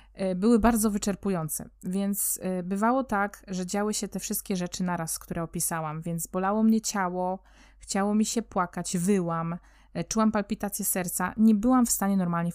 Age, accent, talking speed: 20-39, native, 155 wpm